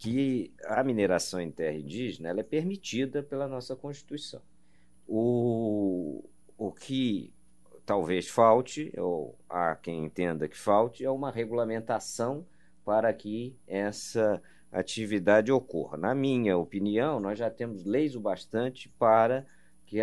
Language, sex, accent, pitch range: Portuguese, male, Brazilian, 100-140 Hz